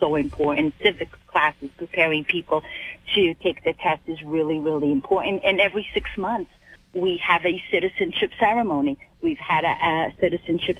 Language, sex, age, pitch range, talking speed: English, female, 40-59, 150-175 Hz, 155 wpm